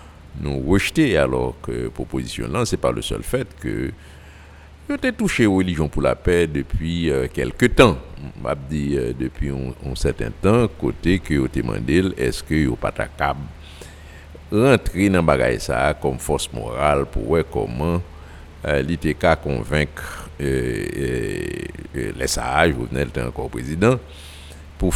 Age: 60-79